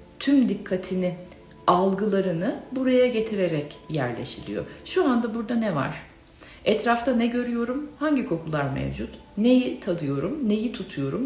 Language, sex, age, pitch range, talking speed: Turkish, female, 60-79, 170-250 Hz, 110 wpm